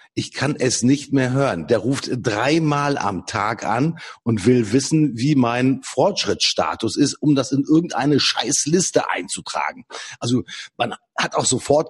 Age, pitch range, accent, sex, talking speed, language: 50-69, 110-145 Hz, German, male, 150 wpm, German